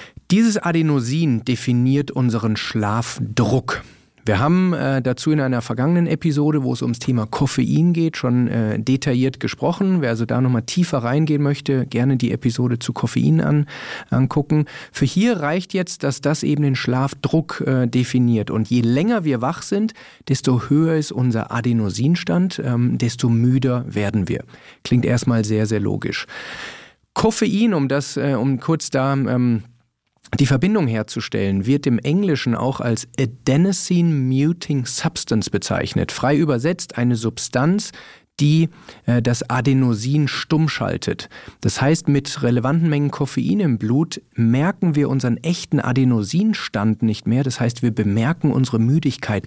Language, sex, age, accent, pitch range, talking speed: German, male, 40-59, German, 120-155 Hz, 145 wpm